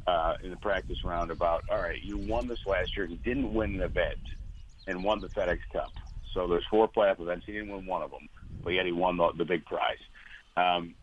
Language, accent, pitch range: English, American, 85-110 Hz